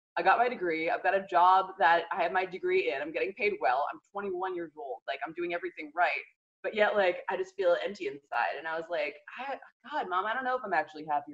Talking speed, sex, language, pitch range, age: 255 wpm, female, English, 160-265 Hz, 20-39